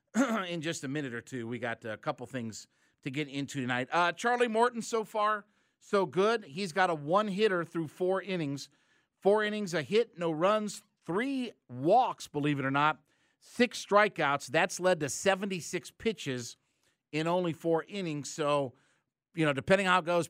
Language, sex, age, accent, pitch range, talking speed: English, male, 50-69, American, 140-190 Hz, 175 wpm